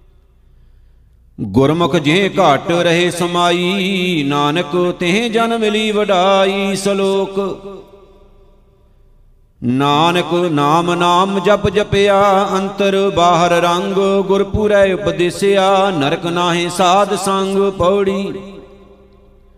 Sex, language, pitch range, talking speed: male, Punjabi, 170-195 Hz, 85 wpm